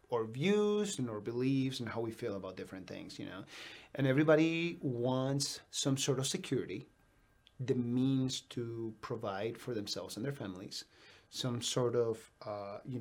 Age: 30-49